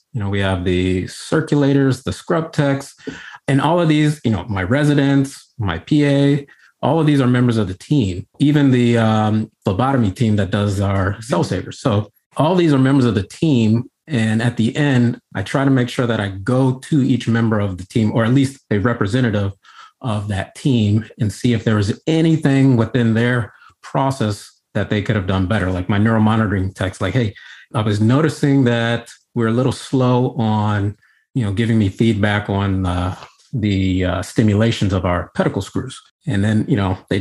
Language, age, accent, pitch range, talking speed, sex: English, 30-49, American, 105-135 Hz, 195 wpm, male